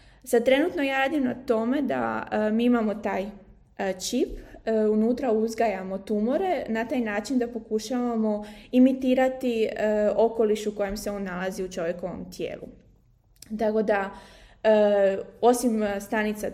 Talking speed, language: 135 wpm, Croatian